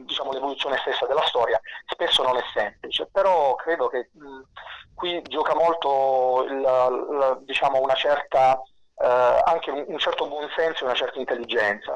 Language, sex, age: Italian, male, 30-49